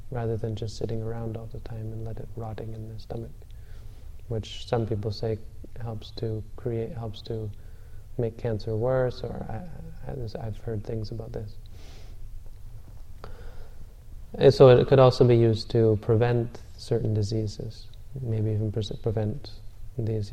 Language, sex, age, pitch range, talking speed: English, male, 20-39, 105-115 Hz, 155 wpm